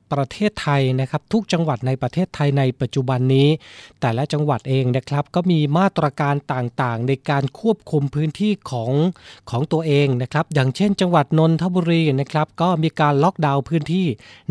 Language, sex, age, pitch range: Thai, male, 20-39, 135-165 Hz